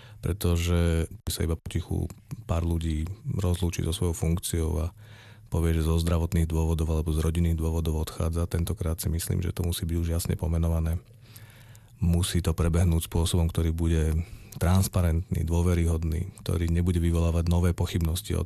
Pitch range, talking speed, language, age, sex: 80-90 Hz, 145 wpm, Czech, 40-59, male